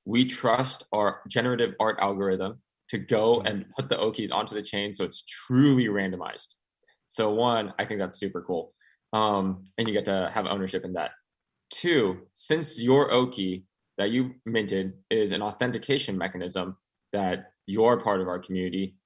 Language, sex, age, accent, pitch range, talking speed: English, male, 20-39, American, 95-110 Hz, 165 wpm